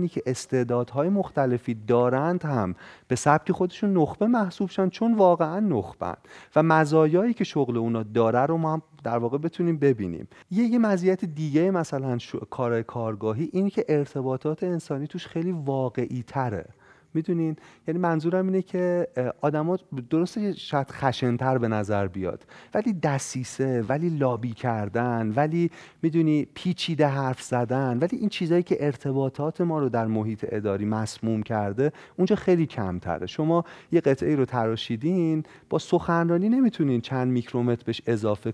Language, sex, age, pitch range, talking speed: Persian, male, 30-49, 120-165 Hz, 140 wpm